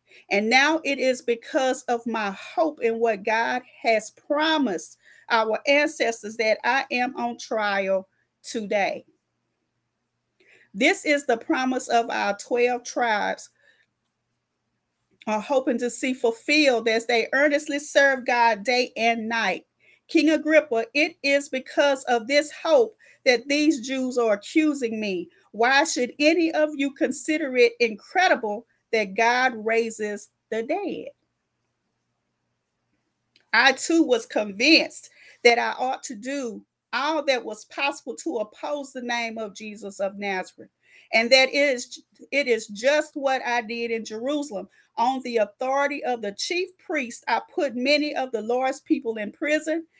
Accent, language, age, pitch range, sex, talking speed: American, English, 40-59, 230-290 Hz, female, 140 wpm